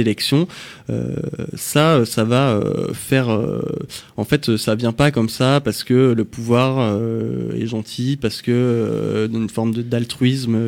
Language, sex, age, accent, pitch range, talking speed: French, male, 20-39, French, 115-135 Hz, 165 wpm